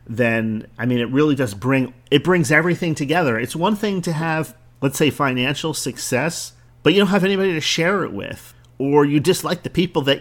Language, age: English, 40-59